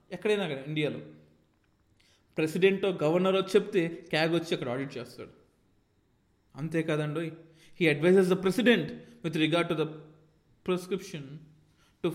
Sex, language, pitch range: male, Telugu, 135-190 Hz